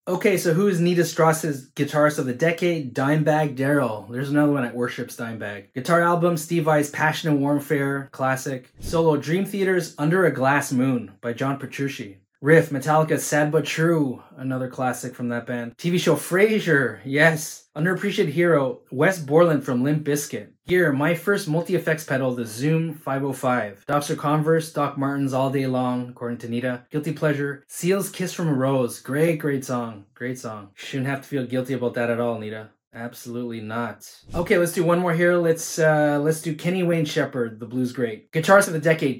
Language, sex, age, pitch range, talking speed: English, male, 20-39, 125-160 Hz, 180 wpm